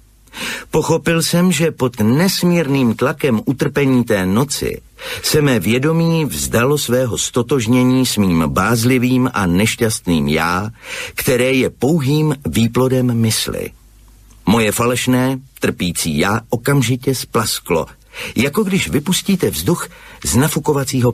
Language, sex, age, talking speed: Slovak, male, 50-69, 110 wpm